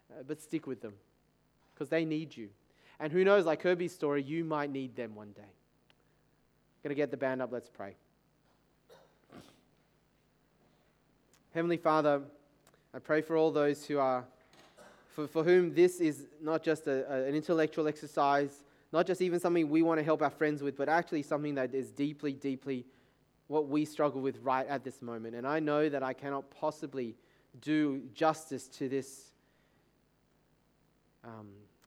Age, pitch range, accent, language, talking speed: 20-39, 130-155 Hz, Australian, English, 160 wpm